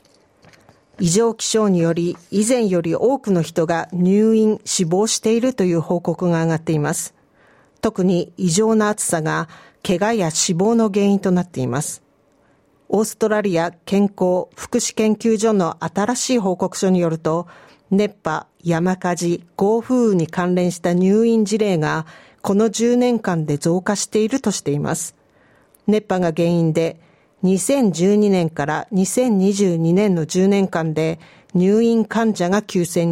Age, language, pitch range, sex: 40-59, Japanese, 170-215 Hz, female